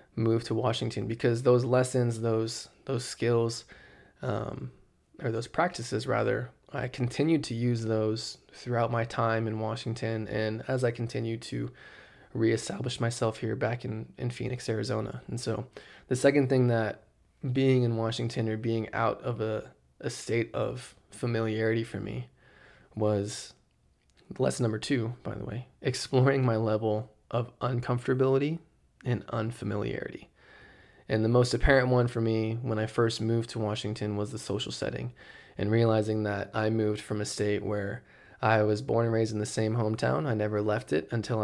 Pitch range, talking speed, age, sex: 110-120 Hz, 160 wpm, 20-39, male